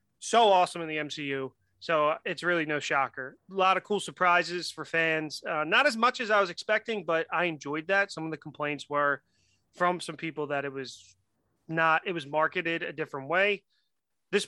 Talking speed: 200 wpm